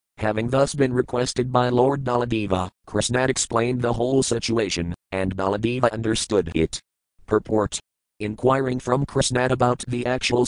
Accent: American